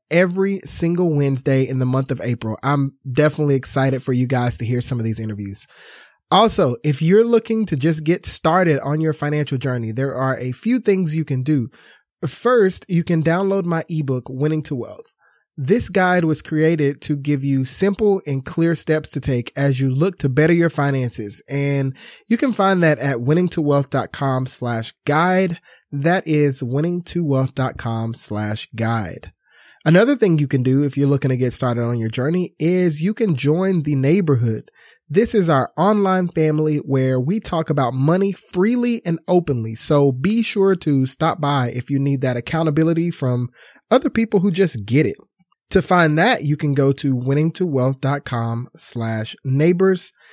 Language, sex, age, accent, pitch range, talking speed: English, male, 20-39, American, 130-175 Hz, 170 wpm